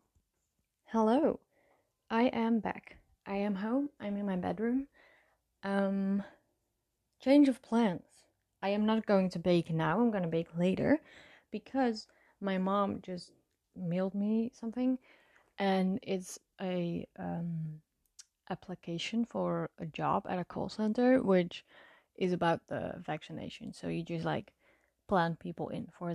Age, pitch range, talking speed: 20-39, 170-225 Hz, 135 wpm